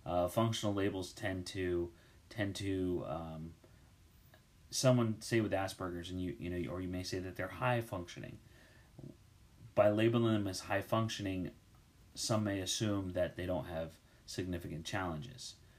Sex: male